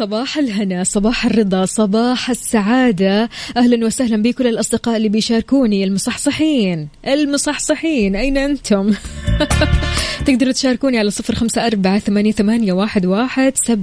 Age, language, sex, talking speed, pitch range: 20-39, Arabic, female, 85 wpm, 190-245 Hz